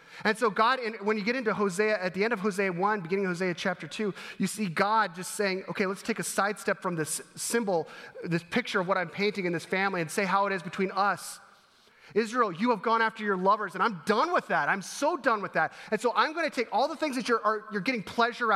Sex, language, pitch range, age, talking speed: male, English, 160-225 Hz, 30-49, 250 wpm